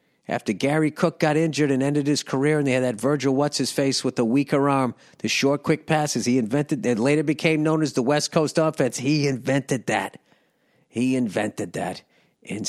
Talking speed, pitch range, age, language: 195 wpm, 115-150 Hz, 50-69, English